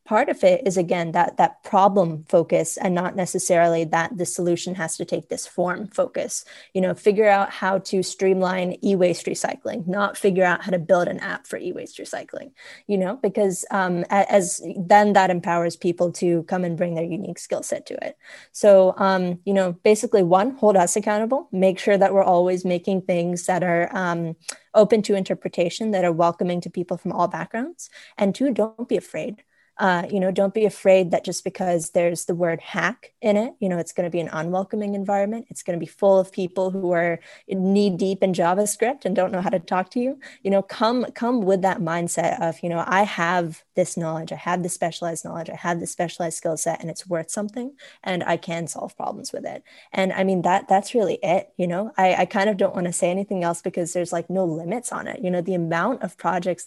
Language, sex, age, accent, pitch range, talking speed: English, female, 20-39, American, 175-205 Hz, 220 wpm